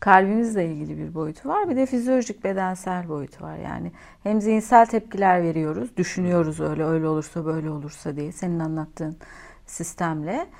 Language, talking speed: Turkish, 145 wpm